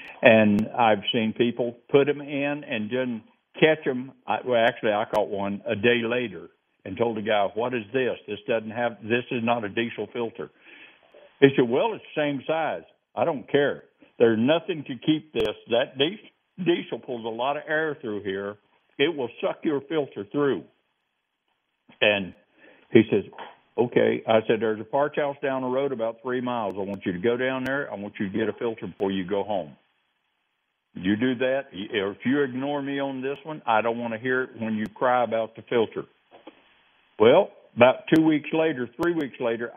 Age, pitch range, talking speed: 60-79, 110-135 Hz, 195 wpm